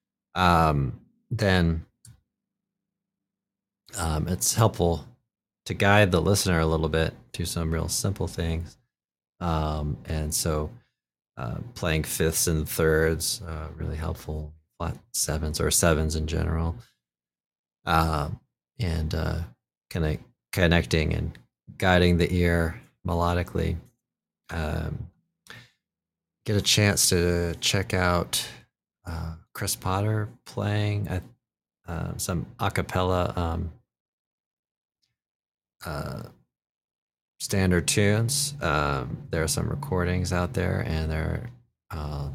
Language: English